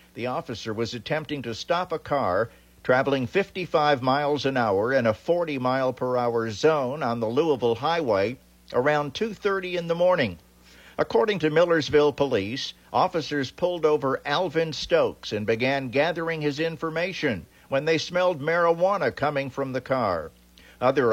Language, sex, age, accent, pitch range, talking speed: English, male, 50-69, American, 115-150 Hz, 140 wpm